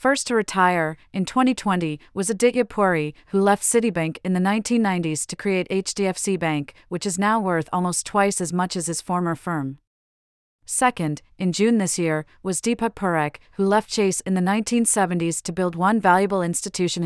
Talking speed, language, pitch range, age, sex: 170 wpm, English, 165-200 Hz, 40-59, female